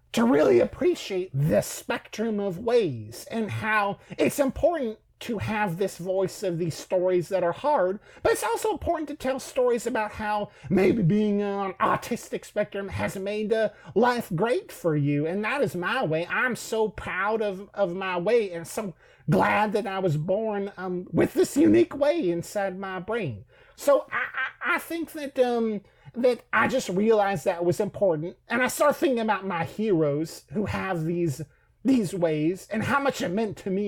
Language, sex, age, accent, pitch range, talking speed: English, male, 40-59, American, 175-225 Hz, 180 wpm